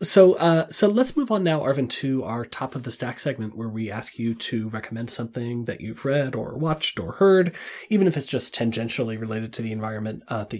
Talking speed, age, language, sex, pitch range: 225 wpm, 30-49, English, male, 110-130 Hz